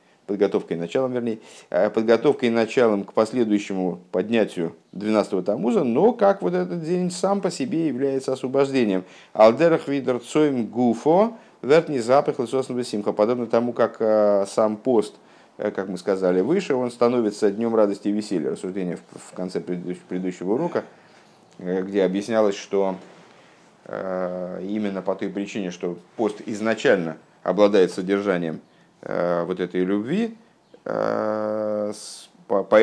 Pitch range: 95-120 Hz